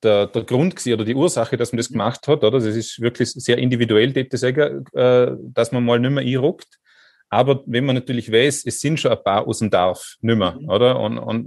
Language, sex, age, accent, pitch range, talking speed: German, male, 30-49, Austrian, 110-125 Hz, 215 wpm